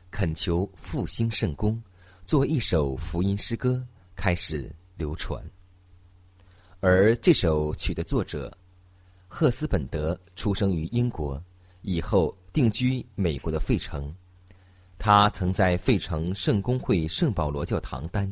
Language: Chinese